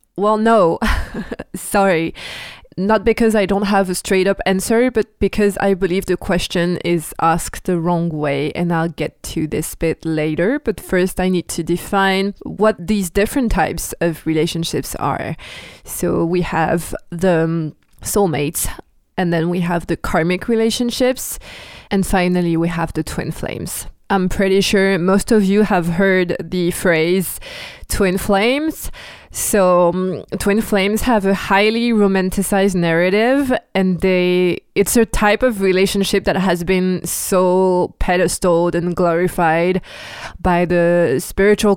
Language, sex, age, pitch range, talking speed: English, female, 20-39, 175-200 Hz, 145 wpm